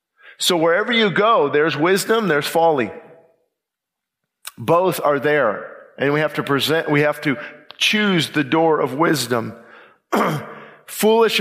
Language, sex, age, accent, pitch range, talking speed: English, male, 50-69, American, 150-190 Hz, 130 wpm